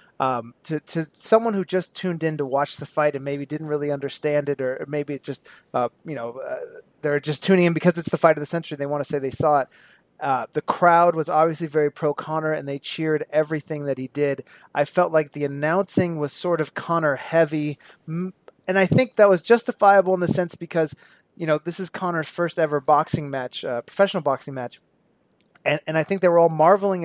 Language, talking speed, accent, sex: English, 220 wpm, American, male